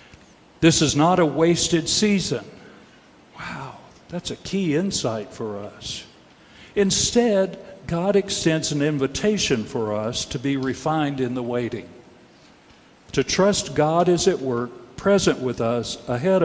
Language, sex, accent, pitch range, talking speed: English, male, American, 125-175 Hz, 130 wpm